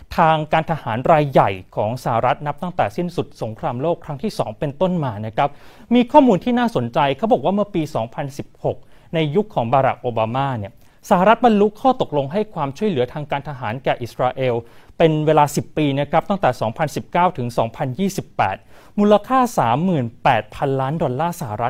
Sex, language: male, Thai